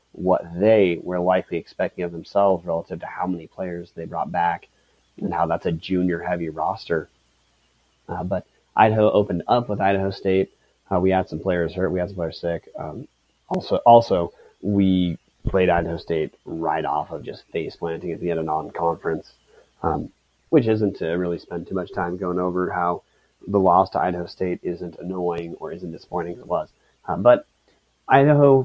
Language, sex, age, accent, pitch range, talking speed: English, male, 30-49, American, 90-105 Hz, 180 wpm